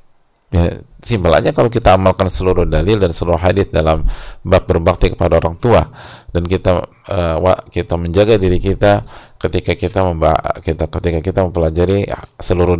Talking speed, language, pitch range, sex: 145 wpm, English, 80-100 Hz, male